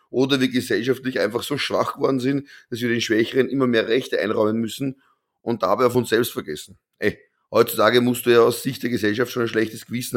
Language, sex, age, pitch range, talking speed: German, male, 30-49, 115-130 Hz, 210 wpm